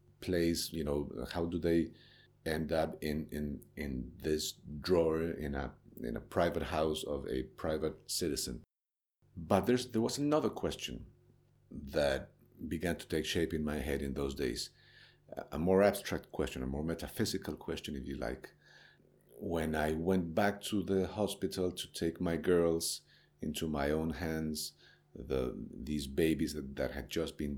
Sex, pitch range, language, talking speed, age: male, 75-95 Hz, Romanian, 160 wpm, 50-69